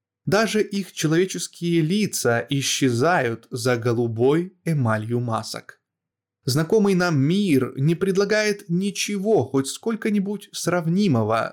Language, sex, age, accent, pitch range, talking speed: Russian, male, 20-39, native, 120-175 Hz, 95 wpm